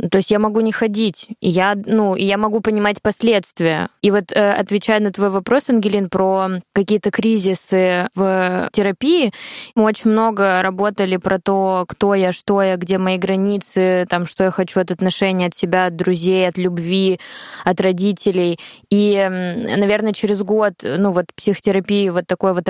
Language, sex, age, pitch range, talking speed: Russian, female, 20-39, 190-220 Hz, 165 wpm